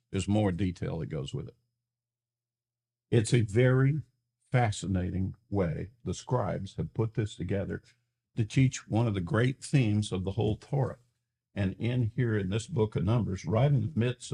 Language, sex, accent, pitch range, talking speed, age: English, male, American, 105-125 Hz, 170 wpm, 50-69